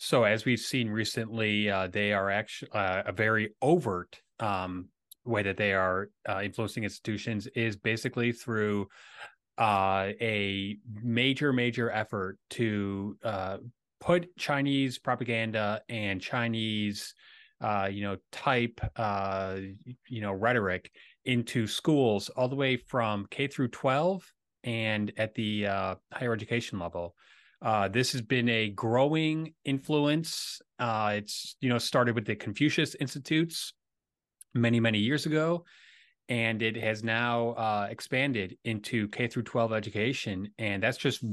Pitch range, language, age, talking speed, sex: 105-125 Hz, English, 30-49, 135 wpm, male